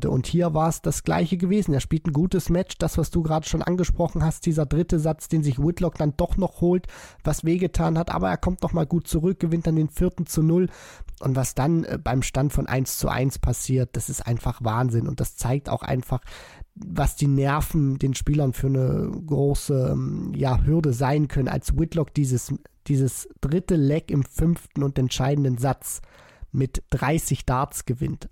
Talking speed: 190 wpm